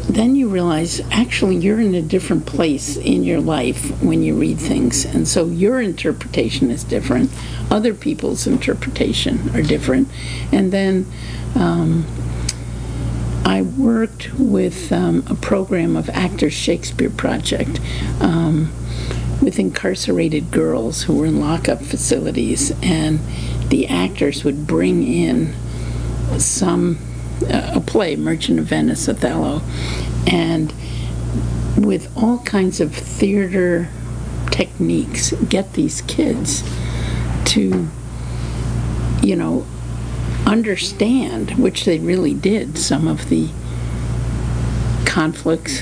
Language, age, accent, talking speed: English, 50-69, American, 110 wpm